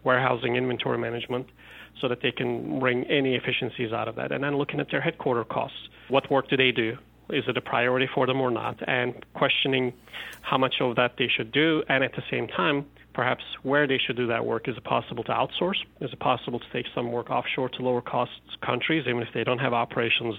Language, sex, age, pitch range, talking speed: English, male, 40-59, 120-140 Hz, 225 wpm